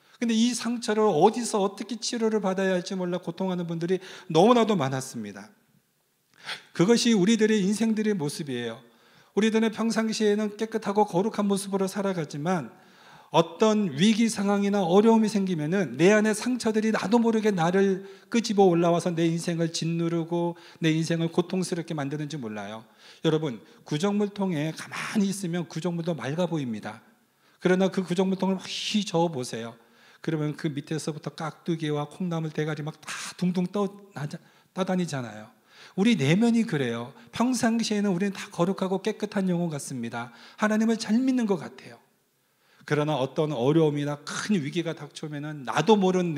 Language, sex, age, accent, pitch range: Korean, male, 40-59, native, 155-210 Hz